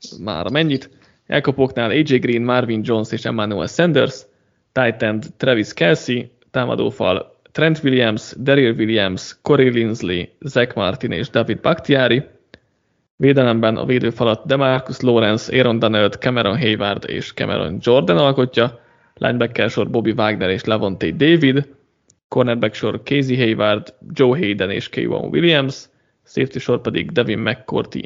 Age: 20-39